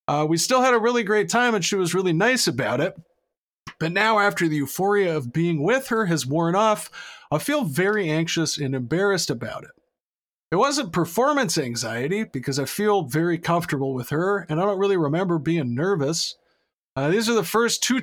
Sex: male